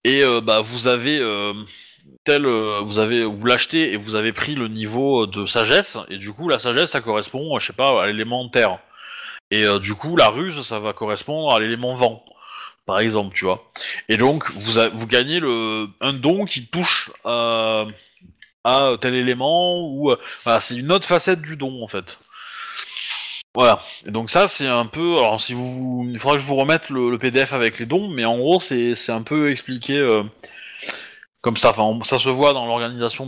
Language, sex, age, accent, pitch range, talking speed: French, male, 20-39, French, 110-145 Hz, 205 wpm